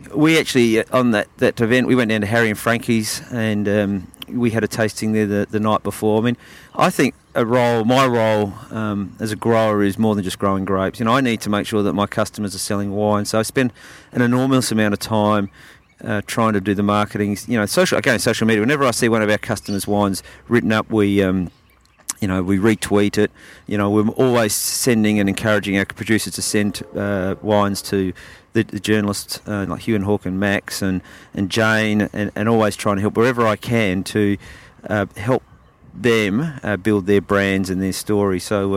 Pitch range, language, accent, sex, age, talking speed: 100-115 Hz, English, Australian, male, 40-59, 220 wpm